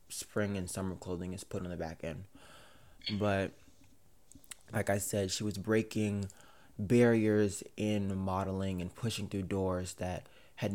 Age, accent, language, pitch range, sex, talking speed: 20-39, American, English, 95-105 Hz, male, 145 wpm